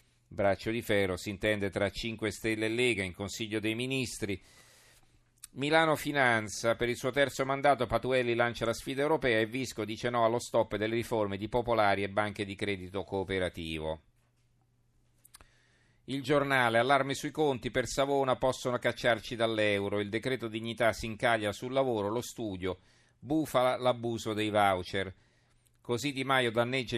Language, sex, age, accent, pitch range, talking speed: Italian, male, 40-59, native, 100-125 Hz, 150 wpm